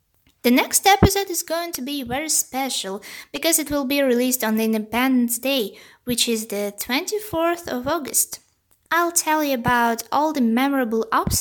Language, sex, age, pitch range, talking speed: English, female, 20-39, 220-295 Hz, 170 wpm